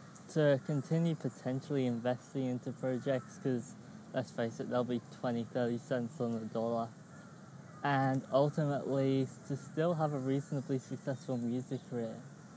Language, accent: English, British